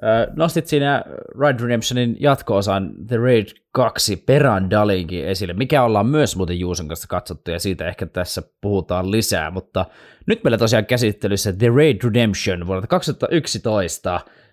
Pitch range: 95-120 Hz